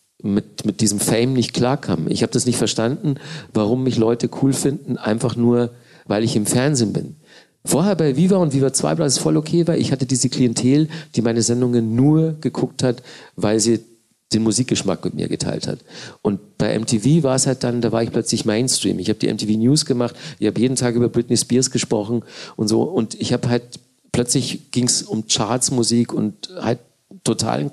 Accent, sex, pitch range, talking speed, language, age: German, male, 115-135 Hz, 200 wpm, German, 50-69